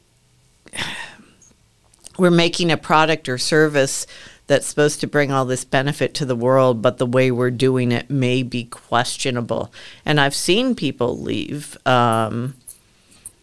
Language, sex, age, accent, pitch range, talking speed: English, female, 50-69, American, 120-155 Hz, 140 wpm